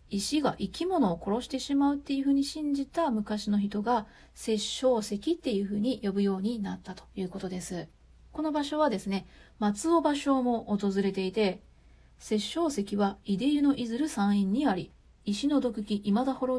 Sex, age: female, 40-59